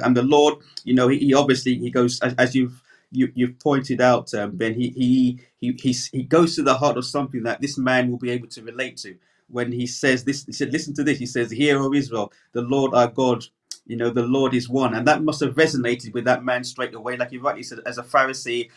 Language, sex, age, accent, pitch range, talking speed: English, male, 30-49, British, 125-145 Hz, 240 wpm